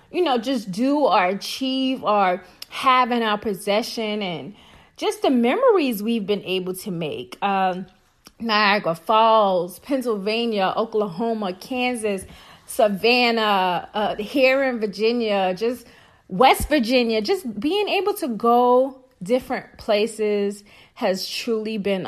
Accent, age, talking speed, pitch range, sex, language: American, 30-49, 120 wpm, 200-235 Hz, female, English